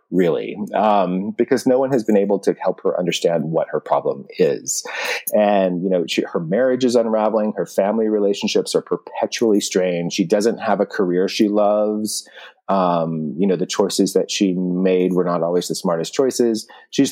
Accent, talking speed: American, 180 wpm